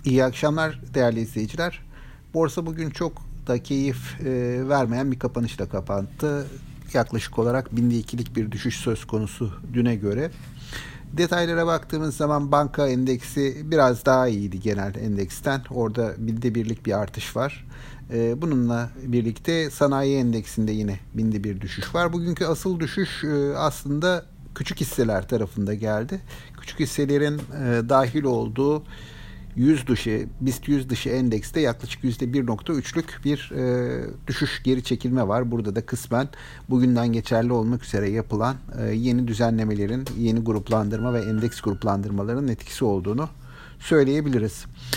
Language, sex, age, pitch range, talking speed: Turkish, male, 50-69, 115-145 Hz, 120 wpm